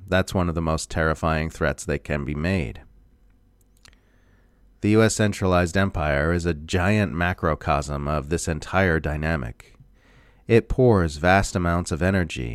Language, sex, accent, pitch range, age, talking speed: English, male, American, 80-100 Hz, 30-49, 140 wpm